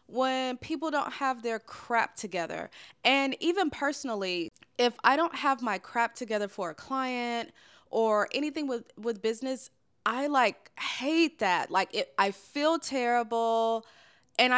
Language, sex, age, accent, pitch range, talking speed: English, female, 20-39, American, 195-265 Hz, 145 wpm